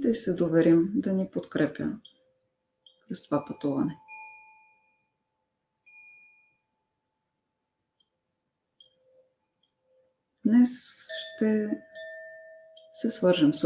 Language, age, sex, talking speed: Bulgarian, 30-49, female, 60 wpm